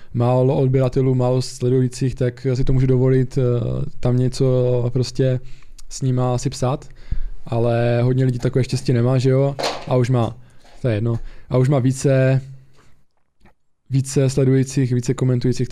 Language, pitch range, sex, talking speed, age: Czech, 125-140 Hz, male, 145 wpm, 20-39